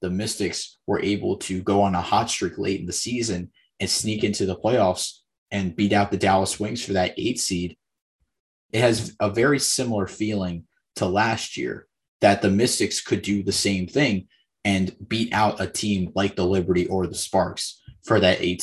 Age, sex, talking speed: 20-39, male, 195 wpm